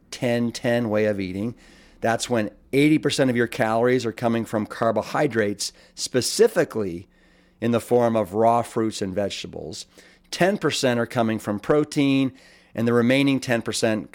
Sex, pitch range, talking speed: male, 105-125 Hz, 130 wpm